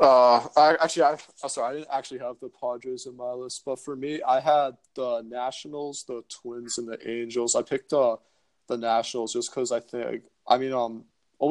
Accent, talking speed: American, 210 wpm